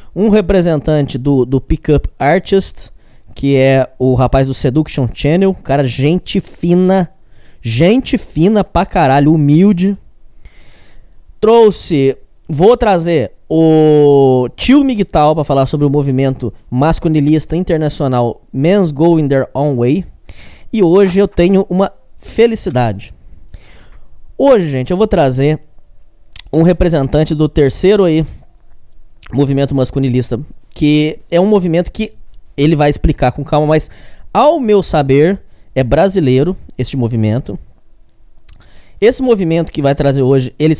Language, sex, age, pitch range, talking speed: Portuguese, male, 20-39, 135-180 Hz, 120 wpm